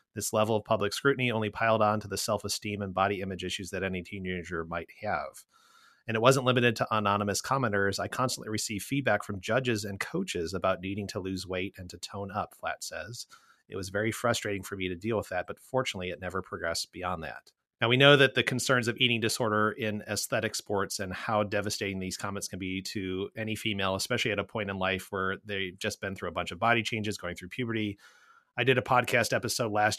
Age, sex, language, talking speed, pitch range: 30-49, male, English, 220 wpm, 100-115 Hz